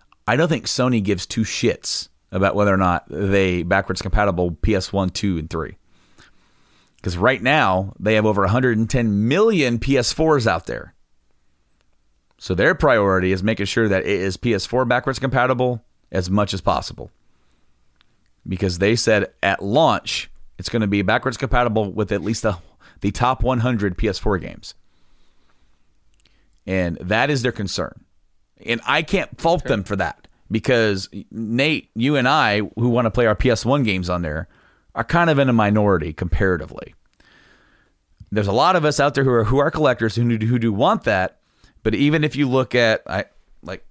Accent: American